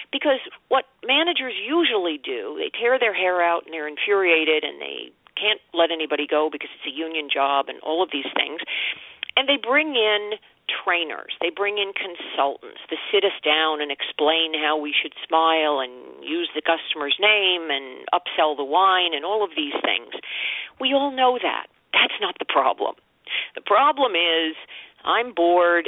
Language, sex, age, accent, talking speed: English, female, 50-69, American, 175 wpm